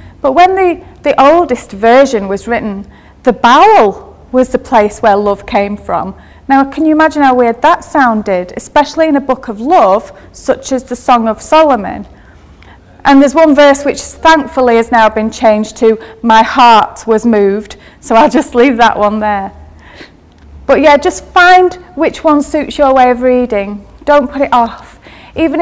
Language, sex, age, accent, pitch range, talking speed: English, female, 30-49, British, 215-280 Hz, 175 wpm